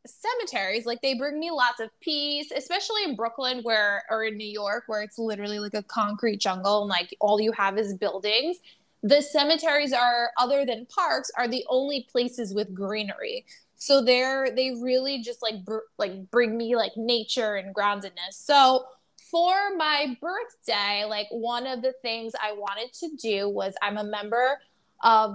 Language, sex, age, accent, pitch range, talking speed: English, female, 20-39, American, 210-265 Hz, 175 wpm